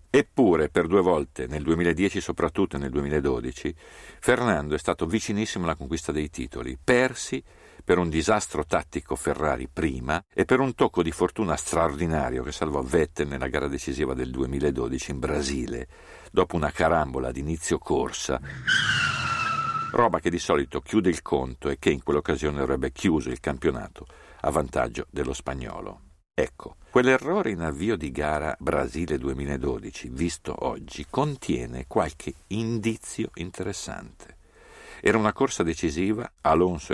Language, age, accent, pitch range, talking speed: Italian, 50-69, native, 70-100 Hz, 135 wpm